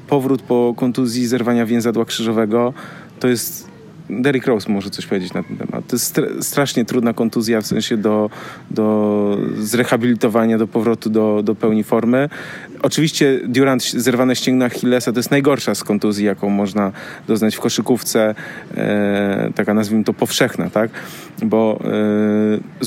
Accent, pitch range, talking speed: native, 115-145 Hz, 145 wpm